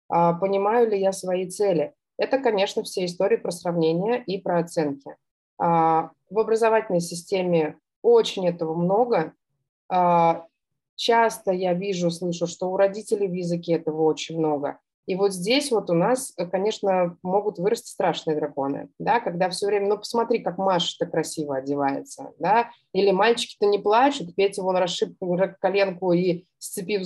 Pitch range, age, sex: 175-225 Hz, 30-49, female